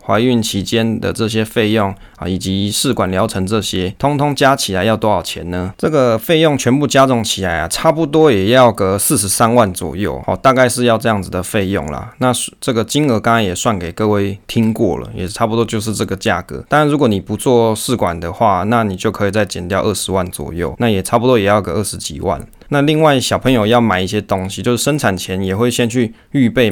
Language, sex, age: Chinese, male, 20-39